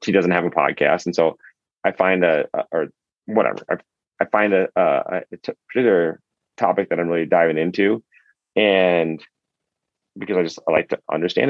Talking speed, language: 175 wpm, English